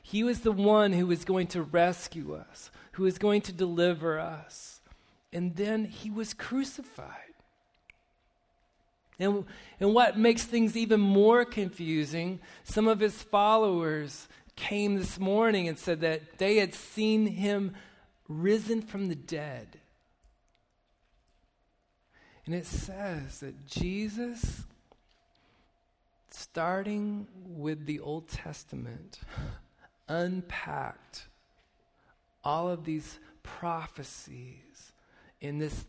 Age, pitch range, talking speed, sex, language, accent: 40-59, 150-200 Hz, 105 wpm, male, English, American